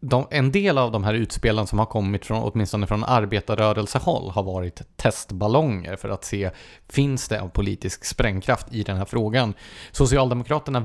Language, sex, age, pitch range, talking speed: English, male, 30-49, 100-120 Hz, 165 wpm